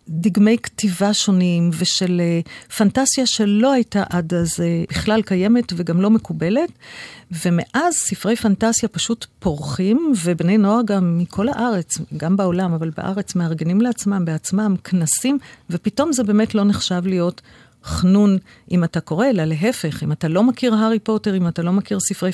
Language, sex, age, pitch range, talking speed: Hebrew, female, 50-69, 175-220 Hz, 155 wpm